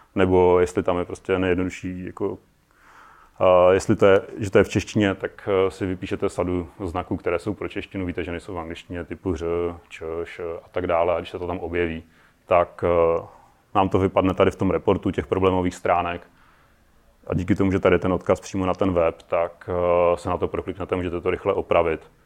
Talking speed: 205 wpm